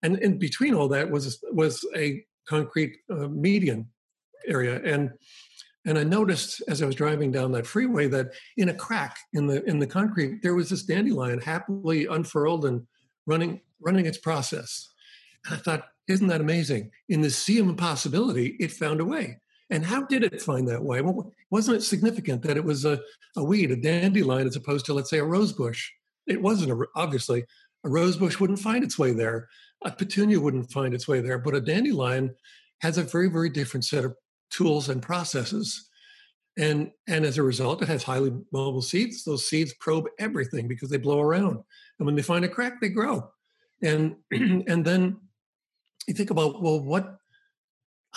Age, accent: 60-79, American